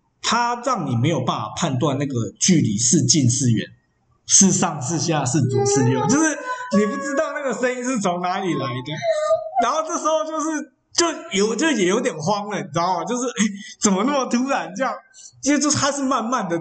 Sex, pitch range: male, 165-255 Hz